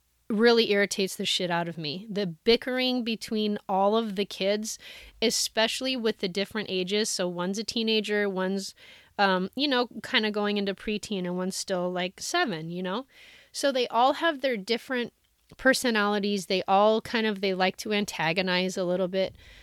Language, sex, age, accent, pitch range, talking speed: English, female, 30-49, American, 195-235 Hz, 175 wpm